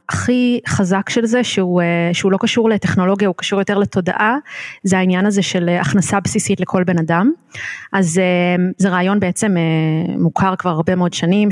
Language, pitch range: Hebrew, 175-205 Hz